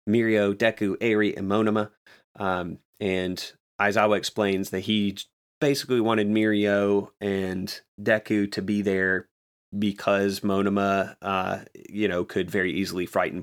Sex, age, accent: male, 30-49, American